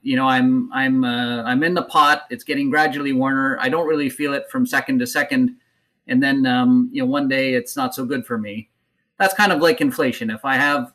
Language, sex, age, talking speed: English, male, 30-49, 235 wpm